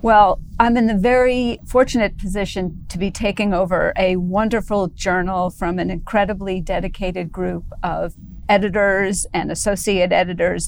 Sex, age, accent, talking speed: female, 50-69, American, 135 wpm